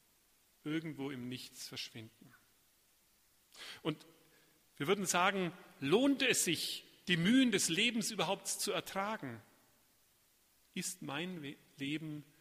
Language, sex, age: German, male, 40-59